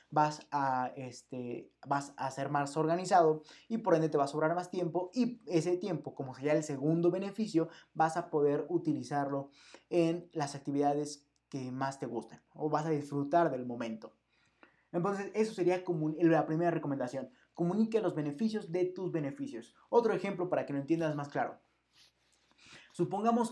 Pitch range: 145-175 Hz